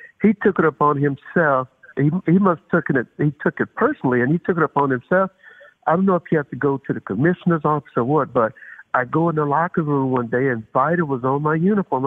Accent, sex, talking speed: American, male, 245 wpm